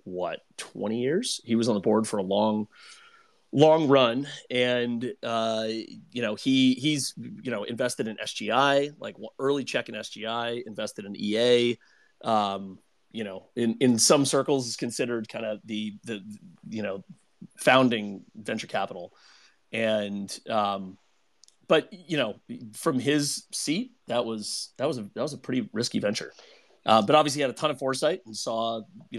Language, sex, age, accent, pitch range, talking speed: English, male, 30-49, American, 105-135 Hz, 165 wpm